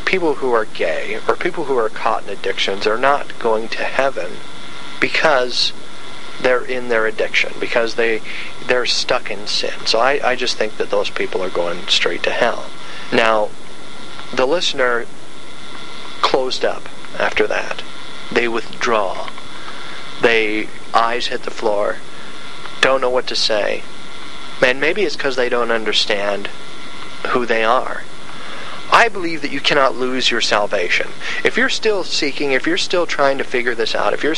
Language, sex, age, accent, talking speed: English, male, 50-69, American, 160 wpm